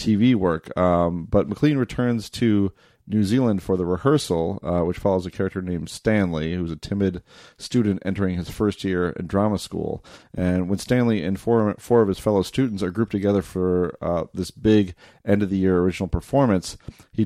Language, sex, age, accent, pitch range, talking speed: English, male, 40-59, American, 90-105 Hz, 190 wpm